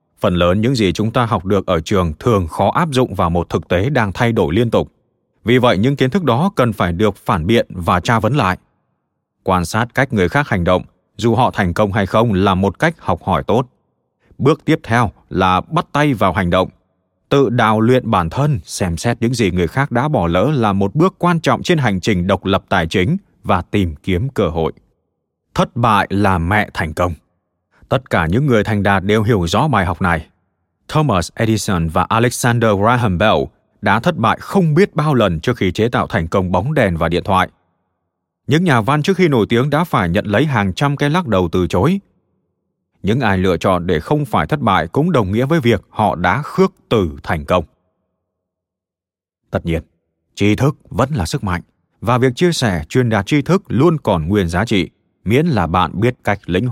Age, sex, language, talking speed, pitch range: 20-39, male, Vietnamese, 215 wpm, 90-125 Hz